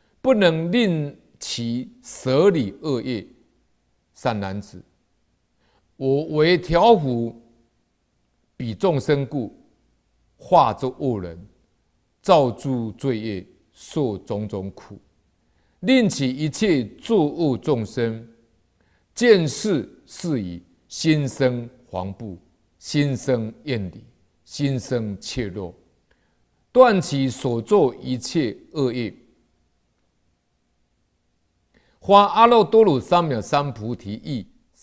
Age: 50-69